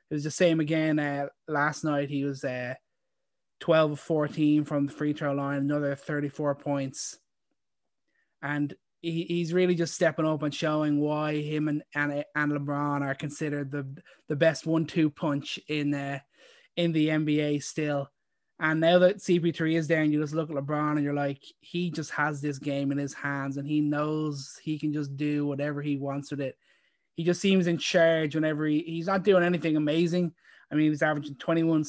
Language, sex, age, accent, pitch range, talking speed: English, male, 20-39, Irish, 145-165 Hz, 190 wpm